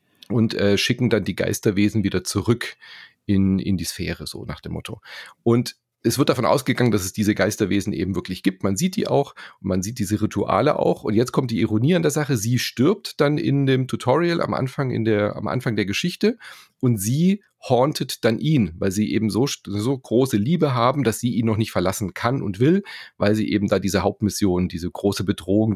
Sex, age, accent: male, 40-59, German